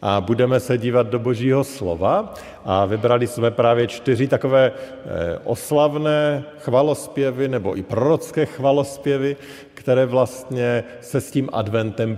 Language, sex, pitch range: Slovak, male, 105-140 Hz